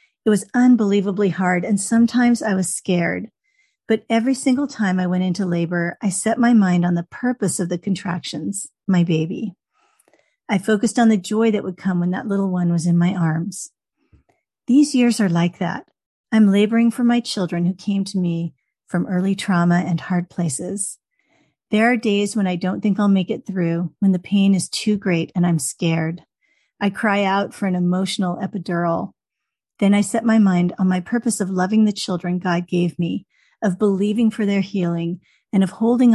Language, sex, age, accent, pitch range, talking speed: English, female, 40-59, American, 175-215 Hz, 190 wpm